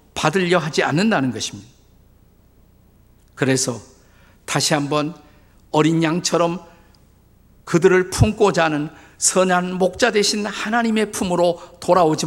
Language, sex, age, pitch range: Korean, male, 50-69, 130-180 Hz